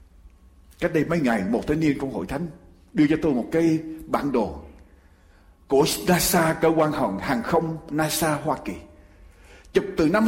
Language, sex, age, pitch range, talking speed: Vietnamese, male, 60-79, 160-235 Hz, 175 wpm